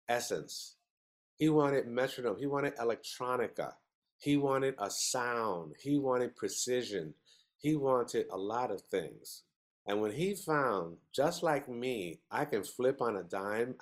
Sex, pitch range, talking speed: male, 110-155 Hz, 145 wpm